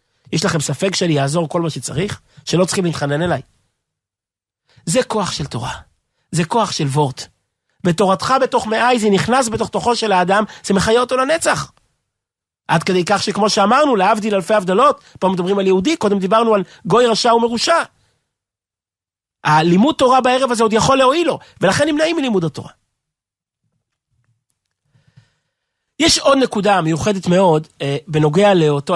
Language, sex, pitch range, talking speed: Hebrew, male, 145-215 Hz, 145 wpm